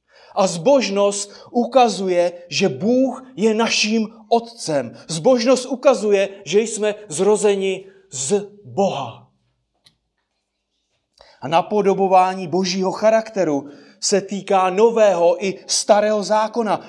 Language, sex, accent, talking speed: Czech, male, native, 90 wpm